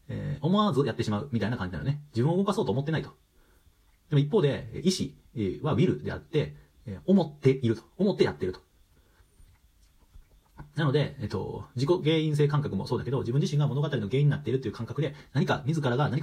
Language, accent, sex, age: Japanese, native, male, 40-59